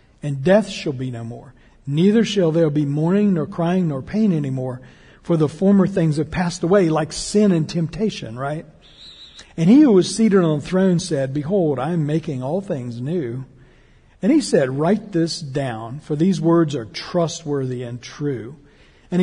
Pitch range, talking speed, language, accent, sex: 140-190 Hz, 180 wpm, English, American, male